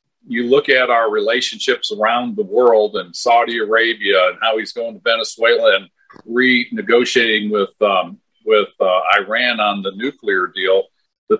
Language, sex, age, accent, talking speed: English, male, 50-69, American, 155 wpm